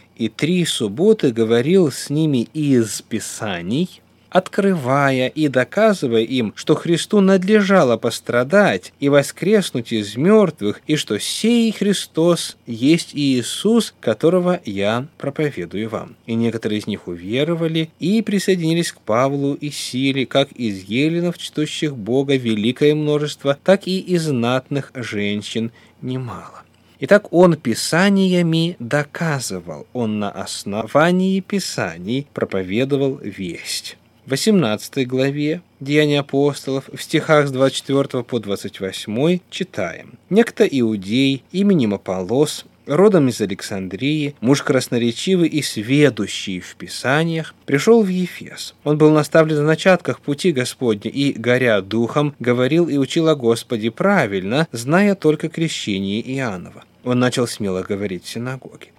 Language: Russian